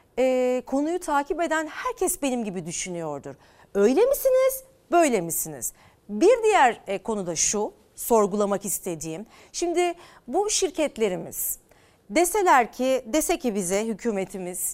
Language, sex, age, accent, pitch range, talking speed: Turkish, female, 40-59, native, 220-315 Hz, 115 wpm